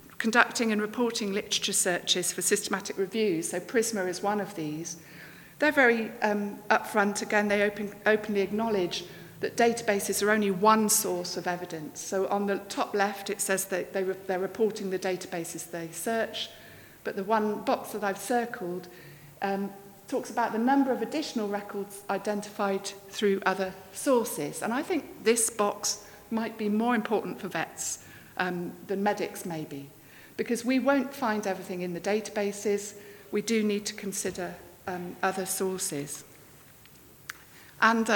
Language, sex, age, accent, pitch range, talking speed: English, female, 50-69, British, 190-220 Hz, 150 wpm